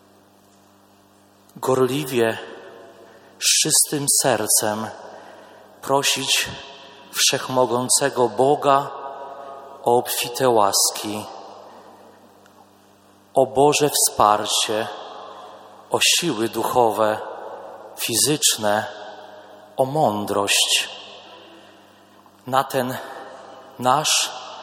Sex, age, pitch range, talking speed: male, 40-59, 105-135 Hz, 50 wpm